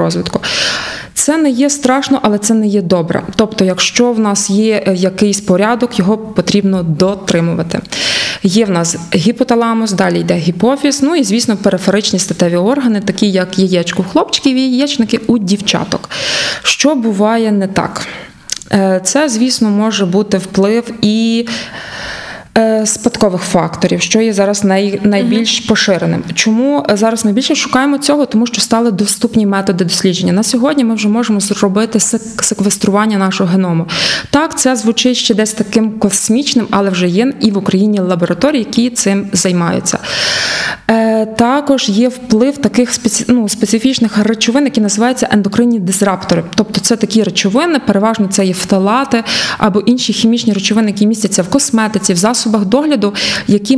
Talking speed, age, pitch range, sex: 140 wpm, 20-39, 195-240 Hz, female